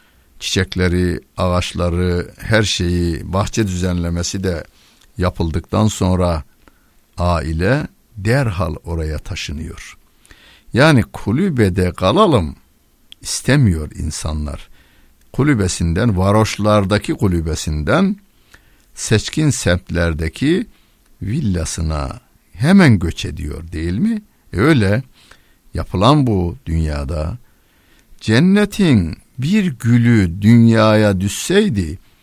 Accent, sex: native, male